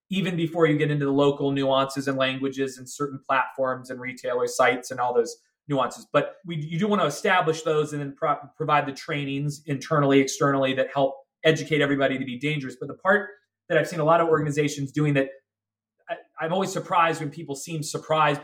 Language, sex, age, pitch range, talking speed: English, male, 30-49, 145-200 Hz, 200 wpm